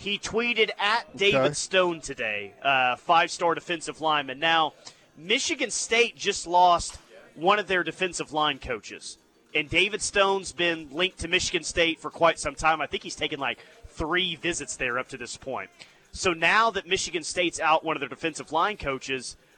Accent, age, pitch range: American, 30-49, 150-185 Hz